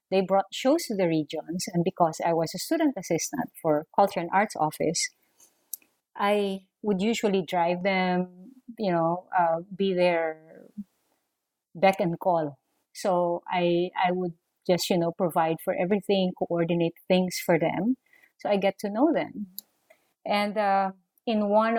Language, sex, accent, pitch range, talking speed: English, female, Filipino, 170-200 Hz, 150 wpm